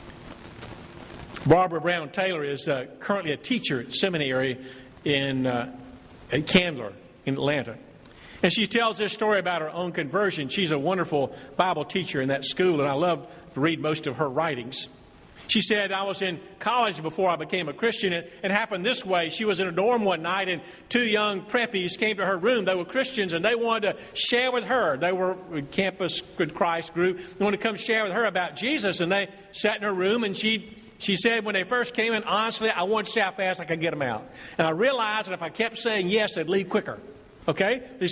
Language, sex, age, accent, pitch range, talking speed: English, male, 50-69, American, 165-215 Hz, 220 wpm